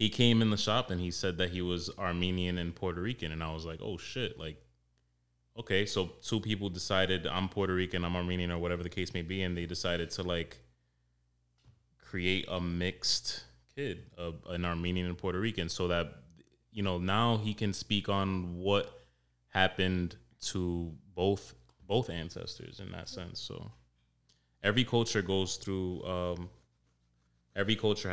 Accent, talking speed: American, 170 wpm